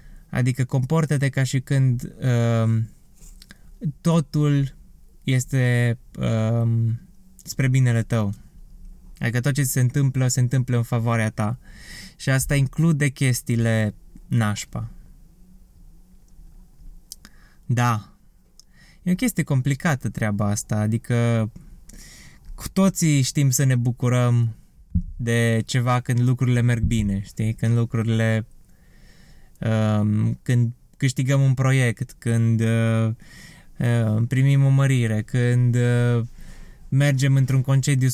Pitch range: 115-140 Hz